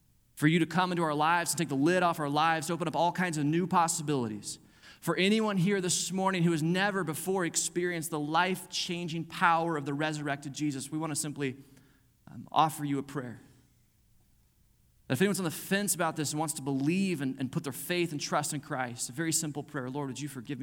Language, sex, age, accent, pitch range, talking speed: English, male, 30-49, American, 120-160 Hz, 225 wpm